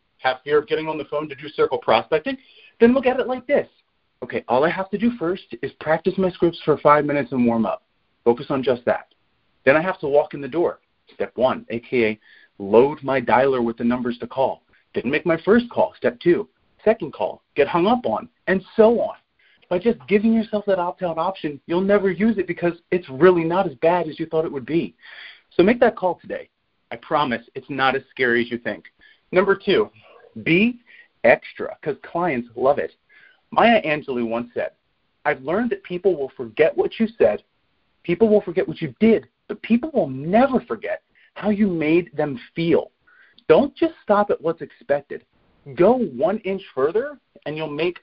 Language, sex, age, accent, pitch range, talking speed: English, male, 30-49, American, 150-220 Hz, 200 wpm